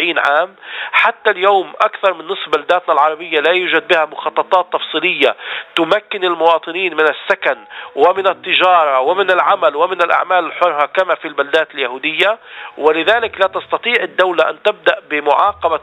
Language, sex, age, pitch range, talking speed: Arabic, male, 40-59, 160-200 Hz, 135 wpm